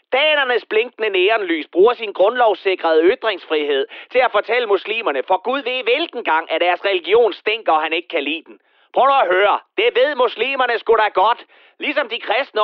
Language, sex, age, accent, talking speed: Danish, male, 30-49, native, 180 wpm